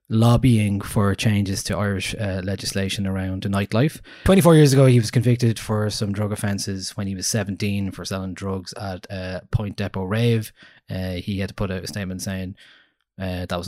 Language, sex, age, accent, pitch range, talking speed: English, male, 20-39, Irish, 100-125 Hz, 195 wpm